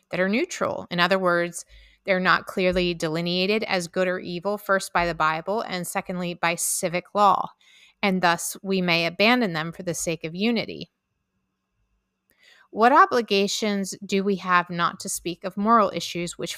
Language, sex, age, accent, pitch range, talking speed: English, female, 30-49, American, 175-215 Hz, 165 wpm